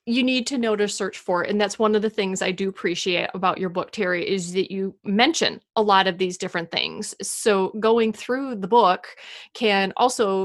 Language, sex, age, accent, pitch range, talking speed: English, female, 30-49, American, 195-255 Hz, 220 wpm